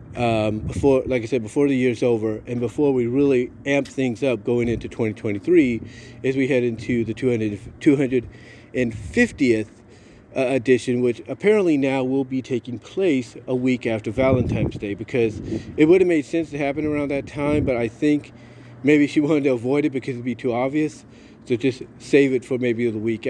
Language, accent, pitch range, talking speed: English, American, 120-145 Hz, 185 wpm